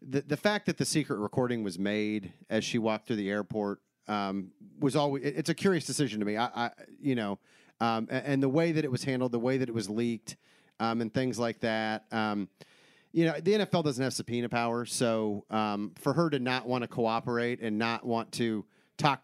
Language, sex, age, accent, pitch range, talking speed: English, male, 40-59, American, 105-135 Hz, 225 wpm